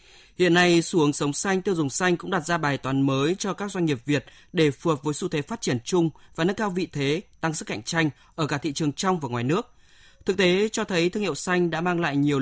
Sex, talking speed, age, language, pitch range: male, 275 wpm, 20-39, Vietnamese, 150-185 Hz